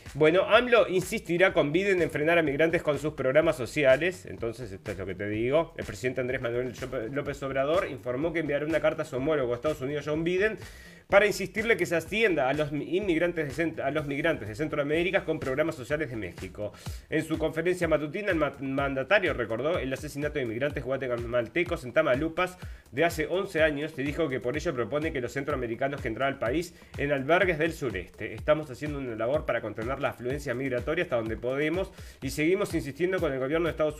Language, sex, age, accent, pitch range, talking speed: Spanish, male, 30-49, Argentinian, 125-165 Hz, 200 wpm